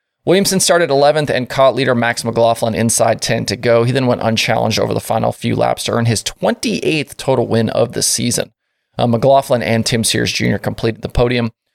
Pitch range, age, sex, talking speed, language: 115-155 Hz, 20-39, male, 200 wpm, English